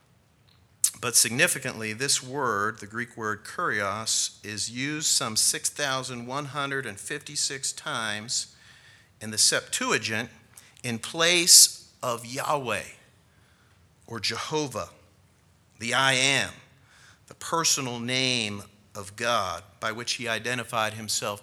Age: 50-69